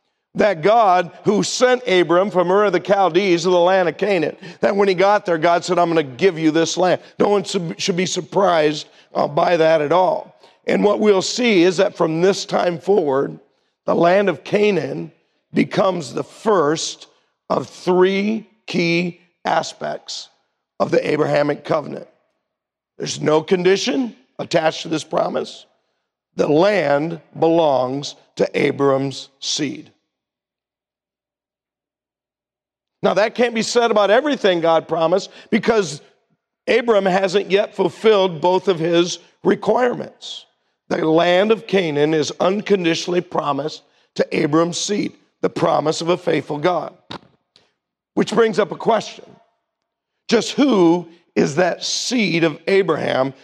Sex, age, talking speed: male, 50-69, 135 wpm